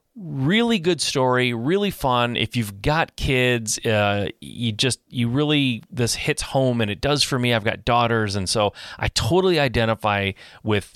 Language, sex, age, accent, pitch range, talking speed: English, male, 30-49, American, 100-125 Hz, 170 wpm